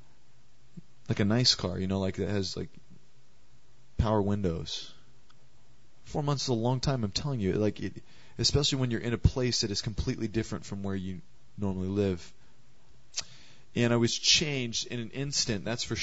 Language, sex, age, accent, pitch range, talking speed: English, male, 30-49, American, 105-125 Hz, 175 wpm